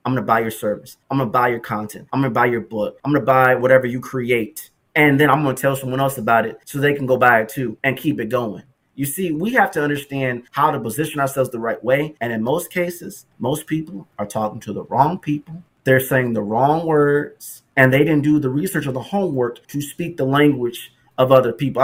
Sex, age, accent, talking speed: male, 30-49, American, 255 wpm